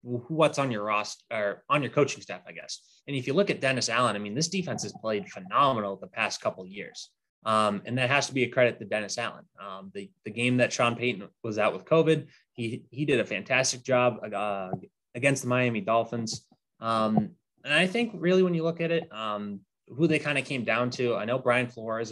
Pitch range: 110-130 Hz